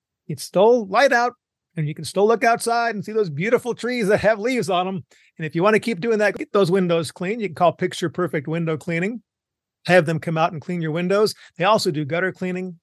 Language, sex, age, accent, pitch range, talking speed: English, male, 40-59, American, 155-195 Hz, 240 wpm